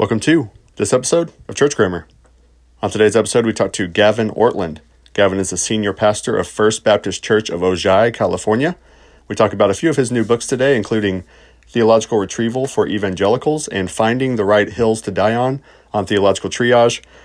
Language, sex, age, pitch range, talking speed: English, male, 40-59, 95-115 Hz, 185 wpm